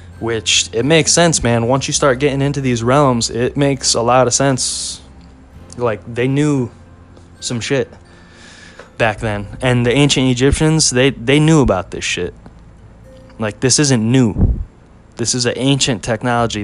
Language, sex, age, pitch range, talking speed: English, male, 20-39, 95-125 Hz, 160 wpm